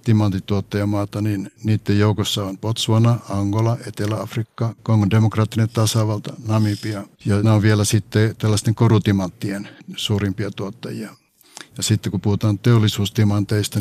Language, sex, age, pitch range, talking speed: Finnish, male, 60-79, 105-125 Hz, 115 wpm